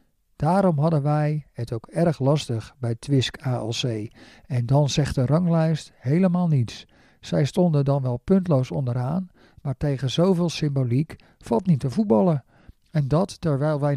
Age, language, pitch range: 50-69, Dutch, 135-170 Hz